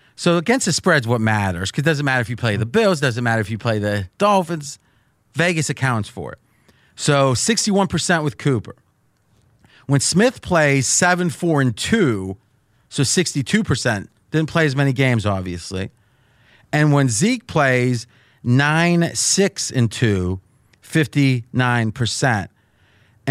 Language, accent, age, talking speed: English, American, 30-49, 125 wpm